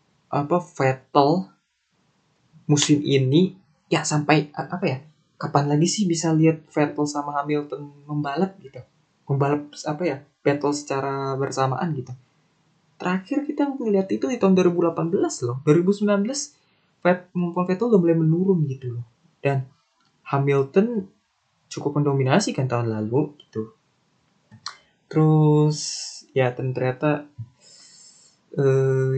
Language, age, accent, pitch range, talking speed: Indonesian, 20-39, native, 135-160 Hz, 110 wpm